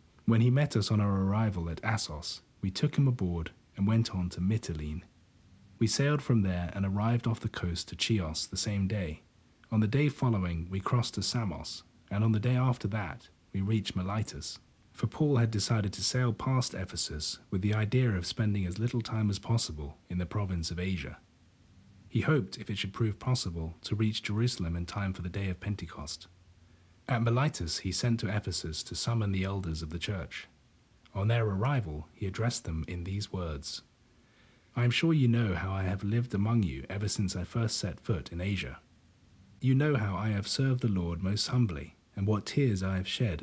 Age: 30-49